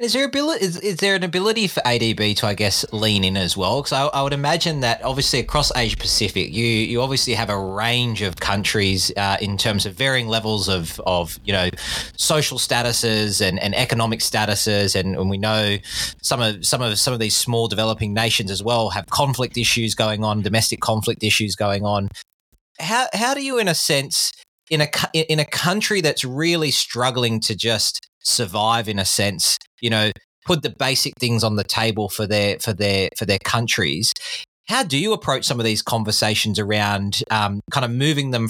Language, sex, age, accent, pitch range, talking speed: English, male, 20-39, Australian, 105-130 Hz, 200 wpm